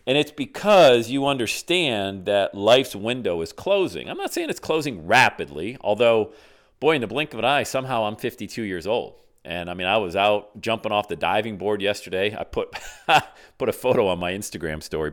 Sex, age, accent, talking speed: male, 40-59, American, 200 wpm